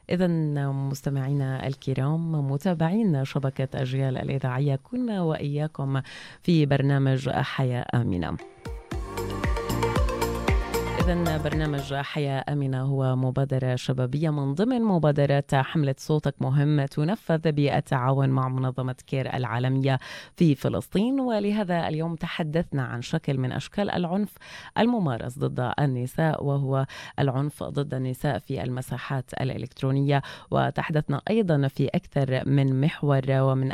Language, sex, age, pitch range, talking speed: Arabic, female, 30-49, 130-155 Hz, 105 wpm